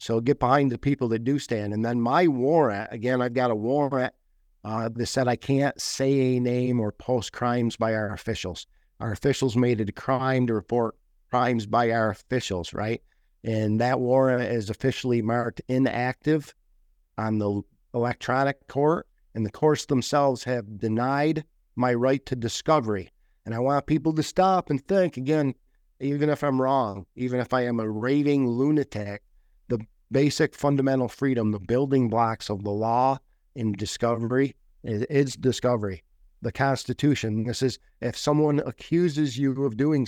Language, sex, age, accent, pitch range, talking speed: English, male, 50-69, American, 115-140 Hz, 165 wpm